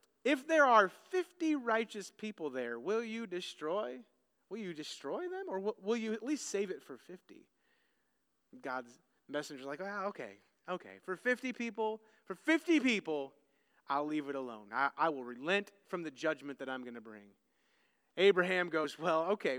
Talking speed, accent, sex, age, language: 175 wpm, American, male, 30-49, English